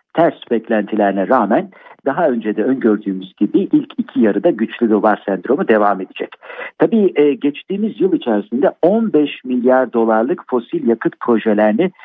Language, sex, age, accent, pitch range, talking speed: Turkish, male, 50-69, native, 110-175 Hz, 130 wpm